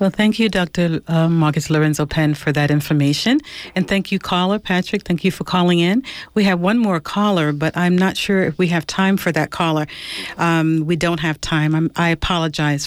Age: 50-69